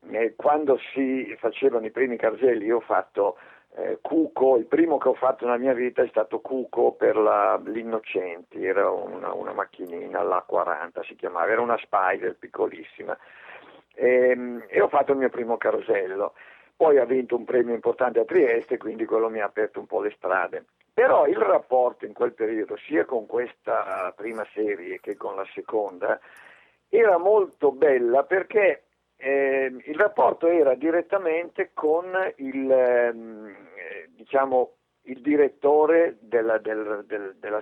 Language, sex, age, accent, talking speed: Italian, male, 50-69, native, 150 wpm